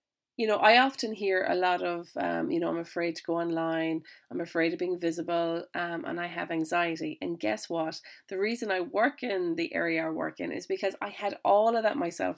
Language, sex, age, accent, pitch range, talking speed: English, female, 30-49, Irish, 170-245 Hz, 230 wpm